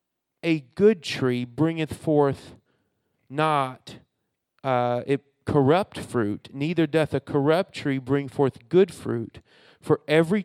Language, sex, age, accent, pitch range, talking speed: English, male, 40-59, American, 135-165 Hz, 120 wpm